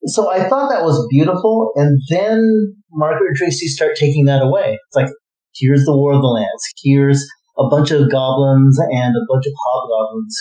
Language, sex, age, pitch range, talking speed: English, male, 40-59, 130-165 Hz, 190 wpm